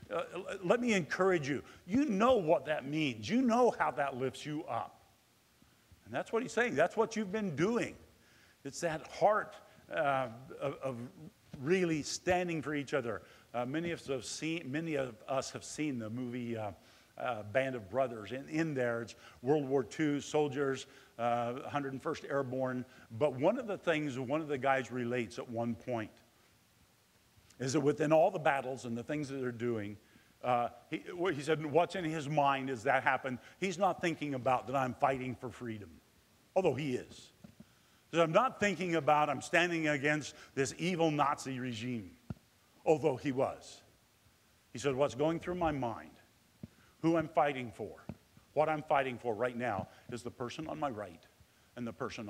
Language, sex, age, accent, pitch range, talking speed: English, male, 50-69, American, 125-160 Hz, 175 wpm